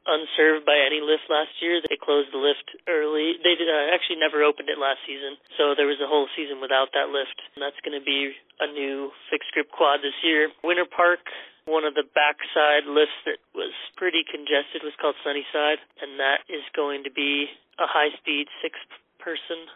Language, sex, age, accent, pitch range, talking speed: English, male, 30-49, American, 145-170 Hz, 200 wpm